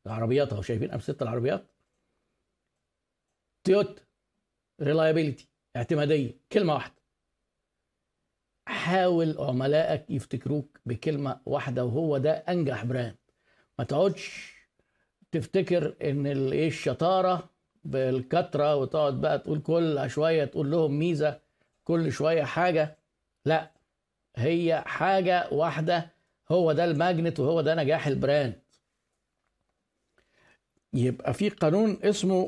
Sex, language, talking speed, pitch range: male, Arabic, 100 wpm, 135-180 Hz